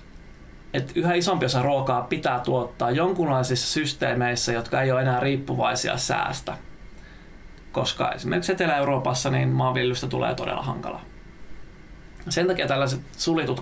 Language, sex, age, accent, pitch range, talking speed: Finnish, male, 20-39, native, 120-135 Hz, 120 wpm